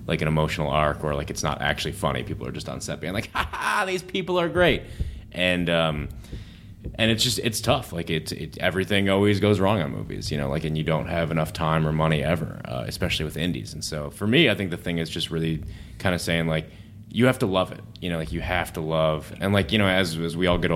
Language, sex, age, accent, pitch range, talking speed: English, male, 20-39, American, 80-100 Hz, 265 wpm